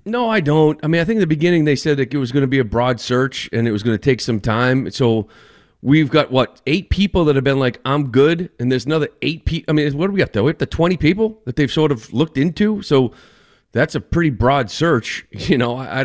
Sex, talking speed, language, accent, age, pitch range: male, 275 wpm, English, American, 40-59, 120-150 Hz